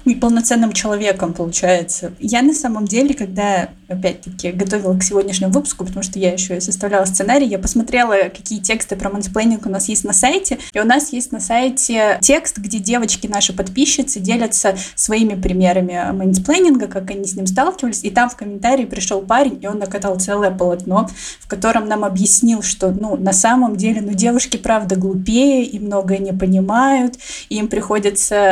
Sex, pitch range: female, 195-245 Hz